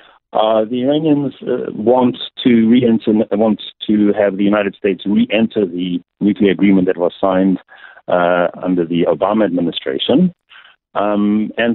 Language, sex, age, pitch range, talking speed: English, male, 60-79, 95-125 Hz, 135 wpm